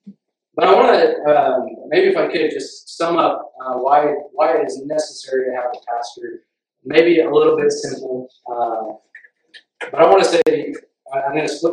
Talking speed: 190 wpm